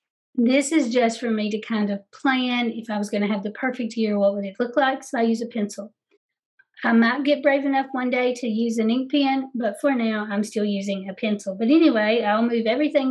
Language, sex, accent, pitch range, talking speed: English, female, American, 210-255 Hz, 245 wpm